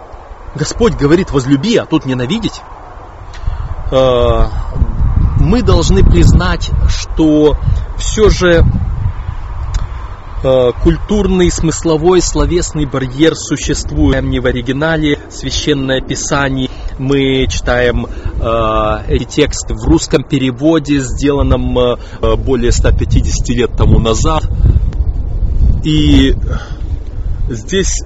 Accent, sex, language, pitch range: native, male, Russian, 95-150 Hz